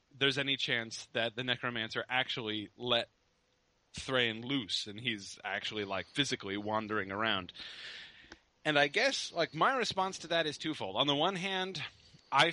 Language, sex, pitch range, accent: English, male, 115-150 Hz, American